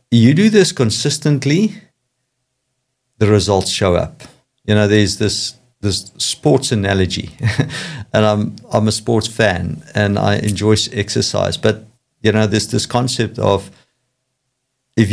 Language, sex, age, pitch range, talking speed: English, male, 50-69, 95-120 Hz, 130 wpm